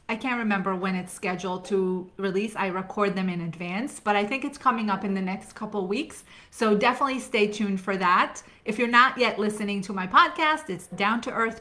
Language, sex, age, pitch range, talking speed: English, female, 30-49, 205-255 Hz, 215 wpm